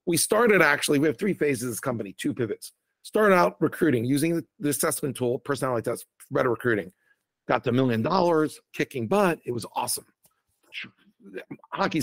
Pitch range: 135-185 Hz